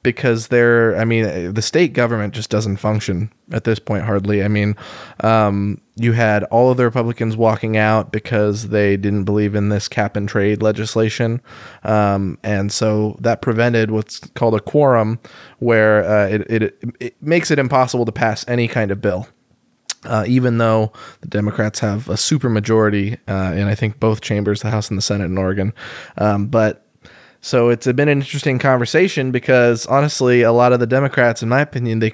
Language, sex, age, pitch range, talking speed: English, male, 20-39, 105-125 Hz, 185 wpm